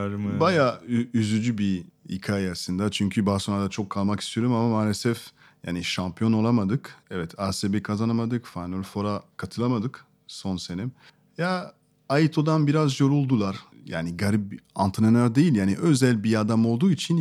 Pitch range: 105-140 Hz